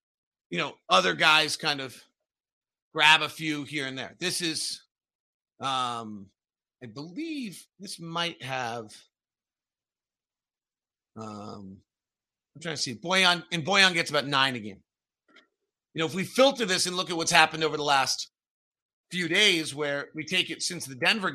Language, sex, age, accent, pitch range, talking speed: English, male, 40-59, American, 140-180 Hz, 155 wpm